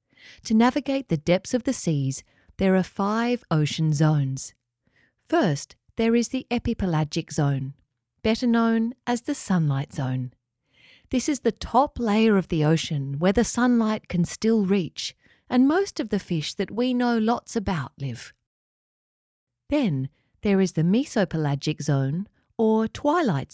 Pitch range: 140-225 Hz